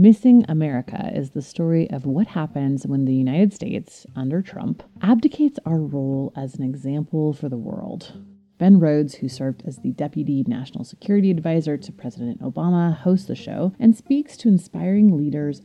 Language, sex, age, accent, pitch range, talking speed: English, female, 30-49, American, 135-205 Hz, 170 wpm